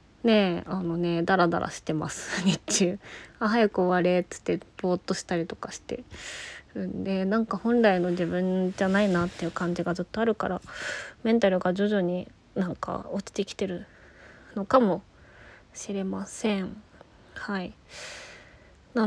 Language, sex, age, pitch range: Japanese, female, 20-39, 190-225 Hz